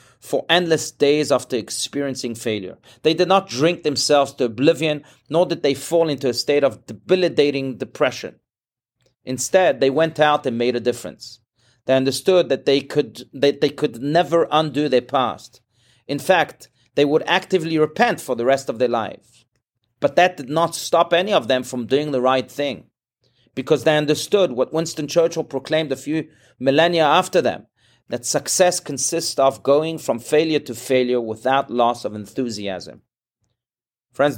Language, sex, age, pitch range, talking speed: English, male, 40-59, 125-155 Hz, 160 wpm